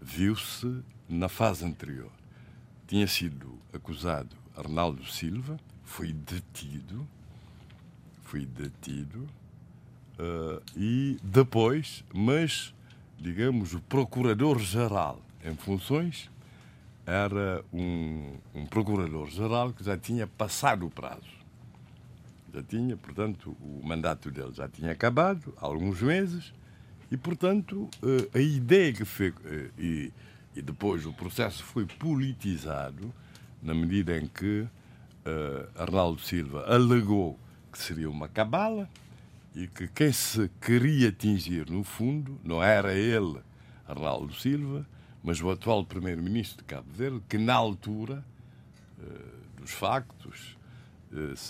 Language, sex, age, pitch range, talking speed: Portuguese, male, 60-79, 85-125 Hz, 105 wpm